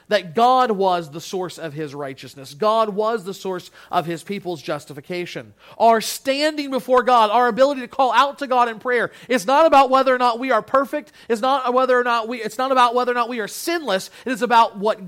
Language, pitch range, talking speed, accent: English, 175-235 Hz, 225 wpm, American